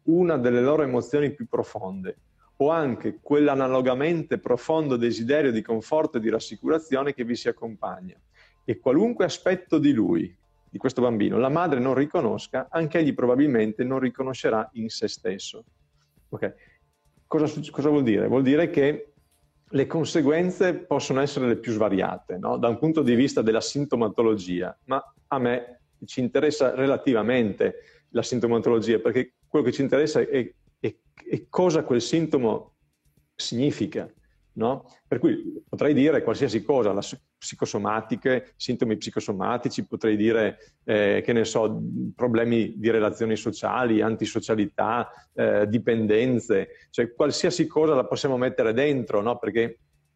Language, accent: Italian, native